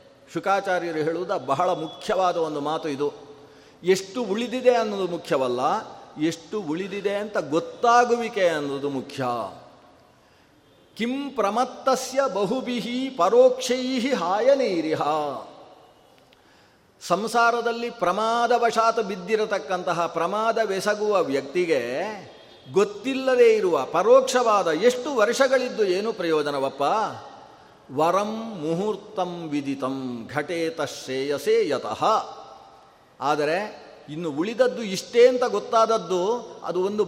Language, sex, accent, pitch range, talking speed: Kannada, male, native, 165-230 Hz, 80 wpm